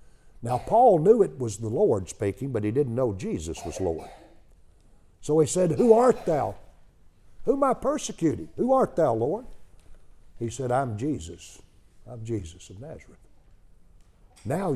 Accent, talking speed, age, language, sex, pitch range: American, 155 wpm, 60-79, English, male, 90-120 Hz